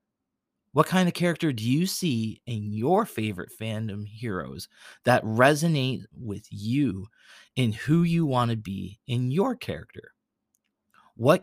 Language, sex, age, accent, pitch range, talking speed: English, male, 30-49, American, 110-140 Hz, 135 wpm